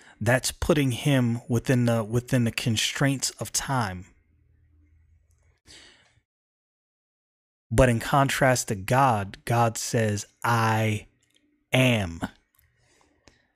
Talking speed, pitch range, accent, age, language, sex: 85 wpm, 100-130 Hz, American, 30-49, English, male